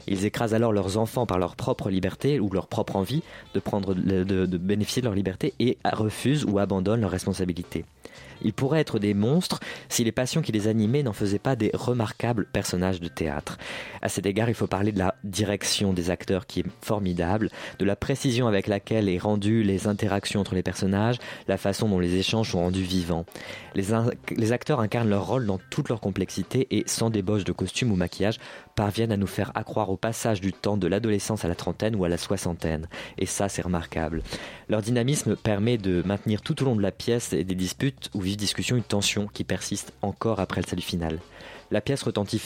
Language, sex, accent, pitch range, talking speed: French, male, French, 95-115 Hz, 210 wpm